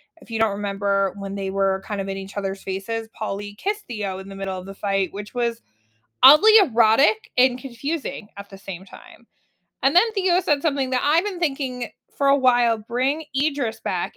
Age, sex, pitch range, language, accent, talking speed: 20-39, female, 205-280 Hz, English, American, 200 wpm